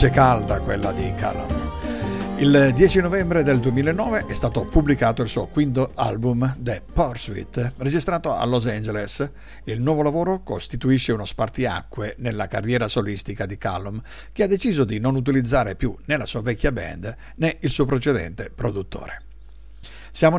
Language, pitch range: Italian, 105-140 Hz